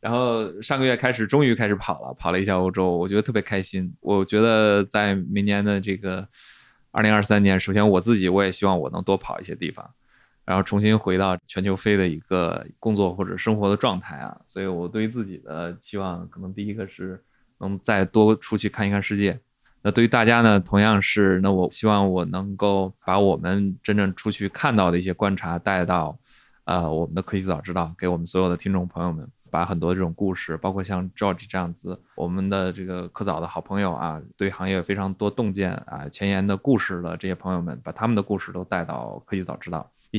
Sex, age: male, 20-39